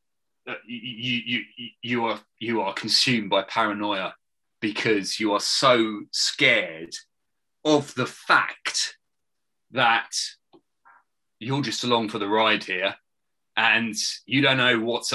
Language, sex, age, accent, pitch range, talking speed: English, male, 30-49, British, 110-130 Hz, 120 wpm